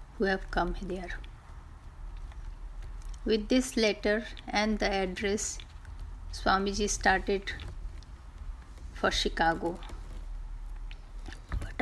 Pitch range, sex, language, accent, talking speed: 165-210 Hz, female, Hindi, native, 80 wpm